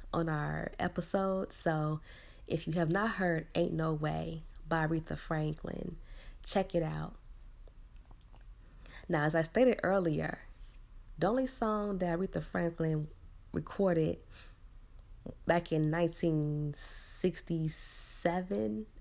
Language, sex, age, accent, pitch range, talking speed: English, female, 20-39, American, 150-185 Hz, 105 wpm